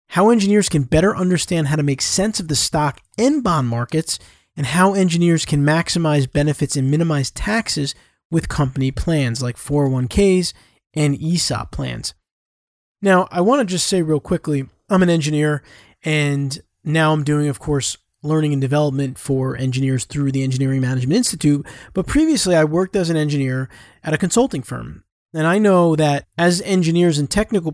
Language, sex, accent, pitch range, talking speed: English, male, American, 140-180 Hz, 170 wpm